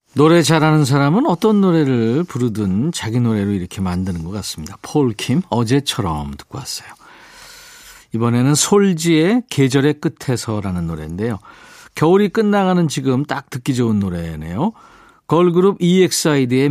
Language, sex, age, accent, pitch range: Korean, male, 50-69, native, 110-170 Hz